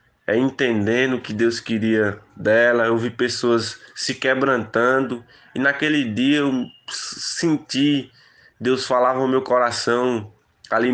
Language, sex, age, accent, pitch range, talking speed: Portuguese, male, 20-39, Brazilian, 110-125 Hz, 125 wpm